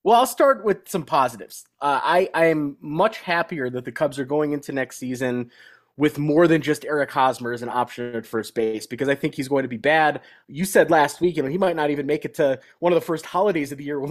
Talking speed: 260 wpm